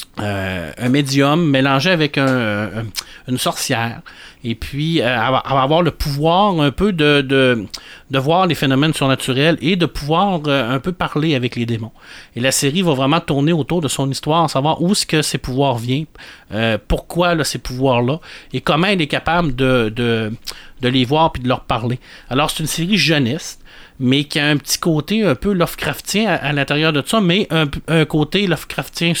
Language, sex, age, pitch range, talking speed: French, male, 30-49, 130-165 Hz, 200 wpm